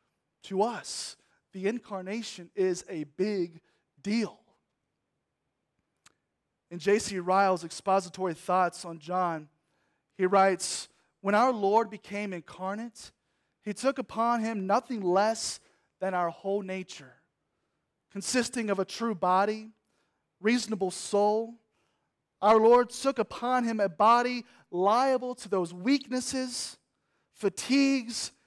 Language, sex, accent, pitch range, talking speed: English, male, American, 195-240 Hz, 105 wpm